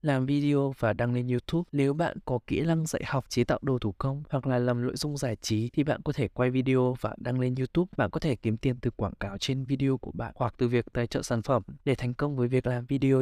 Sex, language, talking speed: male, Vietnamese, 275 wpm